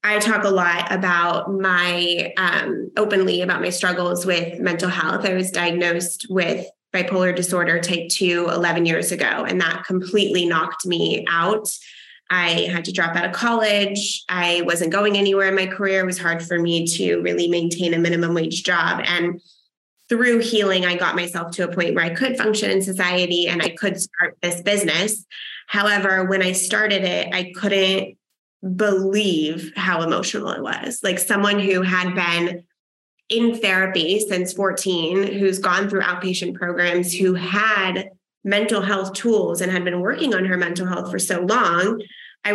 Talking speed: 170 wpm